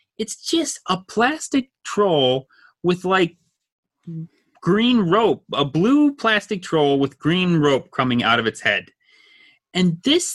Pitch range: 140-215 Hz